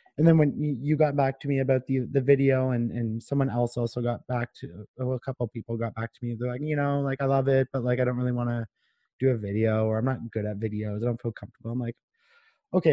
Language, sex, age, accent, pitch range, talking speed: English, male, 30-49, American, 110-130 Hz, 280 wpm